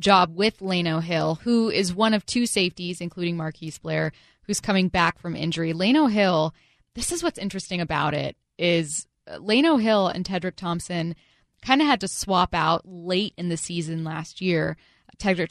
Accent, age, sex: American, 10-29, female